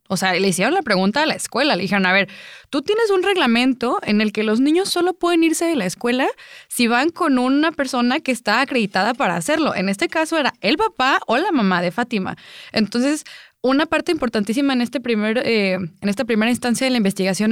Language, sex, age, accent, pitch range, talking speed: English, female, 20-39, Mexican, 190-255 Hz, 220 wpm